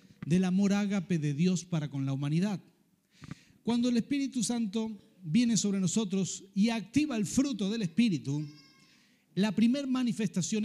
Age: 40-59